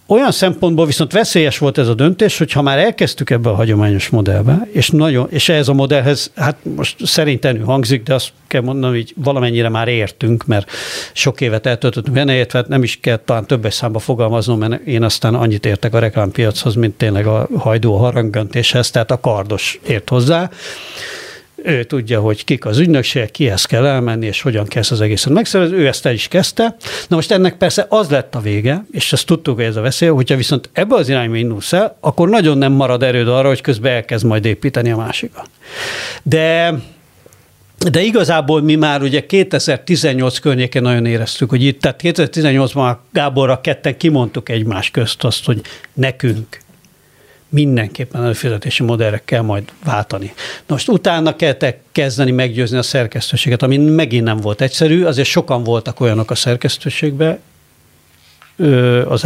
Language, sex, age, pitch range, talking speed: Hungarian, male, 60-79, 115-150 Hz, 165 wpm